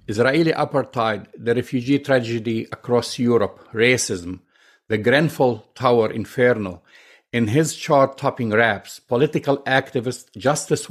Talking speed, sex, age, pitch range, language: 110 wpm, male, 50-69, 115-145 Hz, English